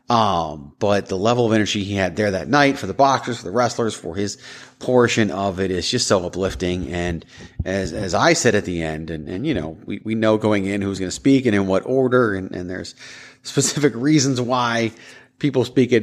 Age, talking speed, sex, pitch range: 30-49, 225 wpm, male, 90-115 Hz